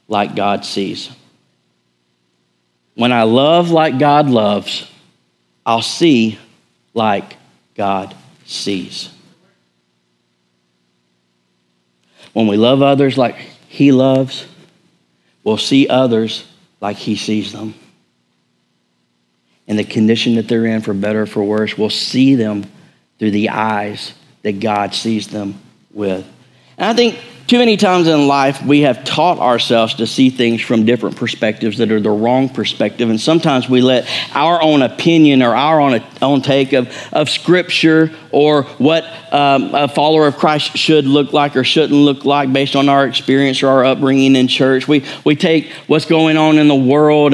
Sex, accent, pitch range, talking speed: male, American, 105-145 Hz, 150 wpm